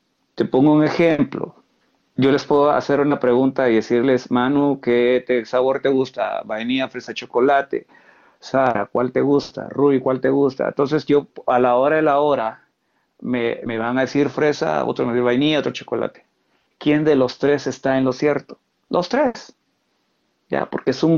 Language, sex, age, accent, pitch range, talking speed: Spanish, male, 50-69, Mexican, 120-140 Hz, 180 wpm